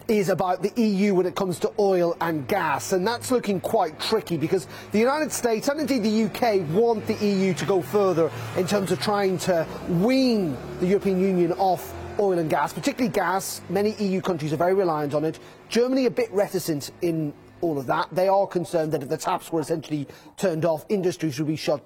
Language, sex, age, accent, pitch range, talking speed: English, male, 30-49, British, 160-215 Hz, 210 wpm